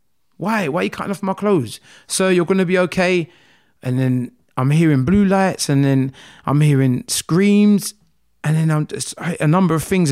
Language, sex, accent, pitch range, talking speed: English, male, British, 125-150 Hz, 195 wpm